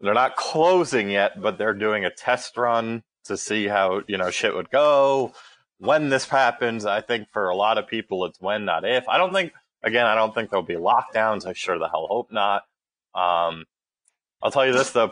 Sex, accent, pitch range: male, American, 100-120 Hz